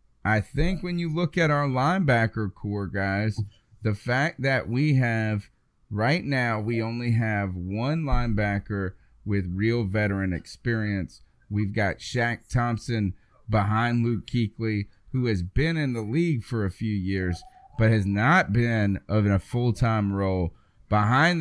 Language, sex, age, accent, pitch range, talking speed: English, male, 30-49, American, 100-130 Hz, 145 wpm